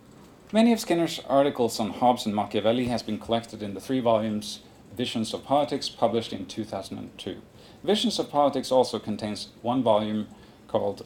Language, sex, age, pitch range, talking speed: English, male, 40-59, 110-130 Hz, 155 wpm